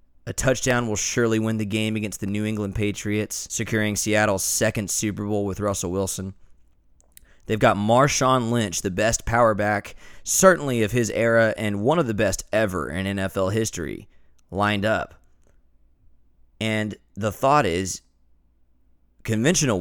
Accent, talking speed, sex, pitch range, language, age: American, 145 wpm, male, 95-130 Hz, English, 20-39